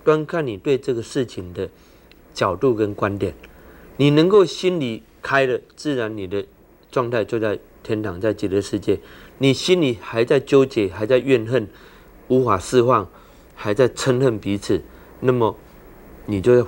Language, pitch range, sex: Chinese, 105-135 Hz, male